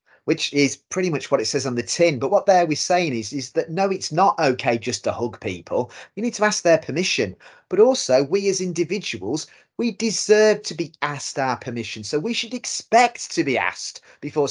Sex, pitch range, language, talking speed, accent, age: male, 135-185 Hz, English, 210 wpm, British, 30-49